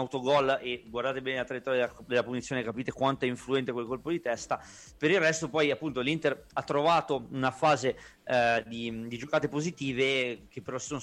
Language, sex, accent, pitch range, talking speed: Italian, male, native, 120-140 Hz, 195 wpm